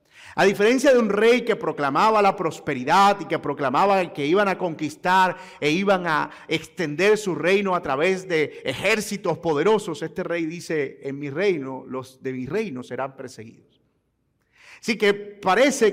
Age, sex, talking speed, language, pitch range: 40-59, male, 160 wpm, Spanish, 140-205 Hz